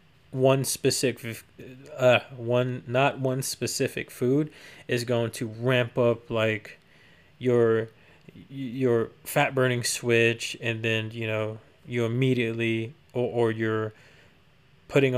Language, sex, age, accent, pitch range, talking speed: English, male, 20-39, American, 115-130 Hz, 115 wpm